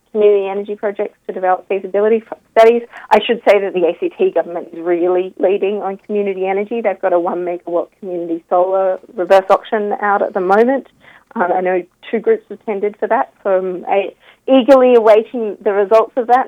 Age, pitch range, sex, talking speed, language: 40-59, 180-220 Hz, female, 180 wpm, English